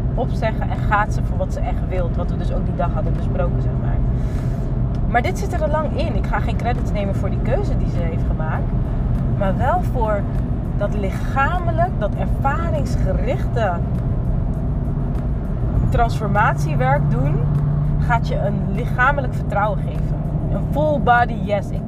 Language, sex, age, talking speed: Dutch, female, 20-39, 160 wpm